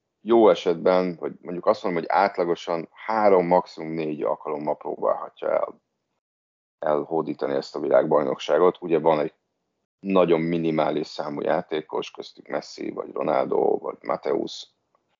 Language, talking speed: Hungarian, 120 wpm